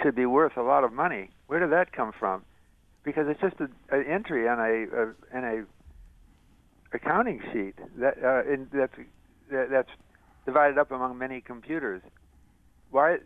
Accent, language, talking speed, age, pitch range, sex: American, English, 165 wpm, 60-79, 110-150 Hz, male